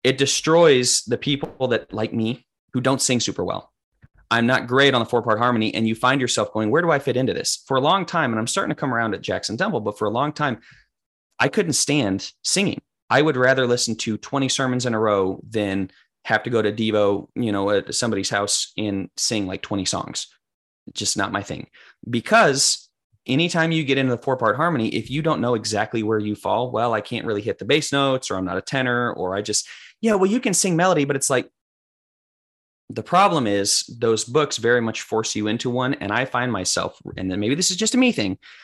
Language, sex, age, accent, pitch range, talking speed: English, male, 30-49, American, 105-135 Hz, 230 wpm